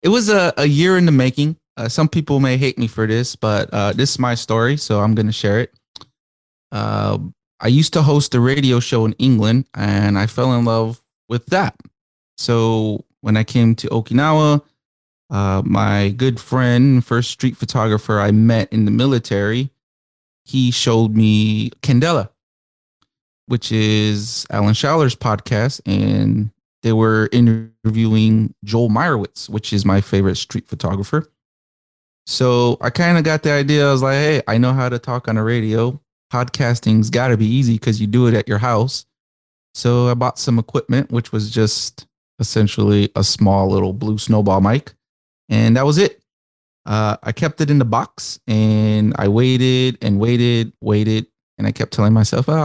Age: 20-39